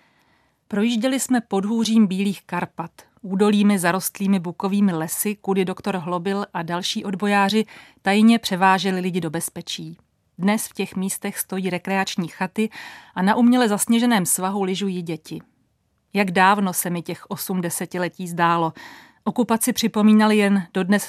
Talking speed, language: 135 wpm, Czech